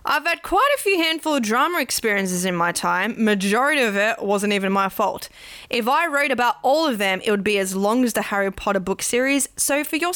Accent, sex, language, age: Australian, female, English, 10-29